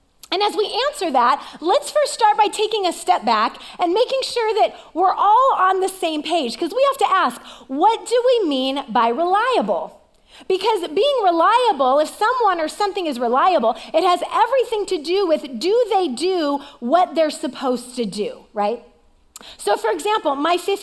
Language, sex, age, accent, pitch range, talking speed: English, female, 30-49, American, 310-405 Hz, 180 wpm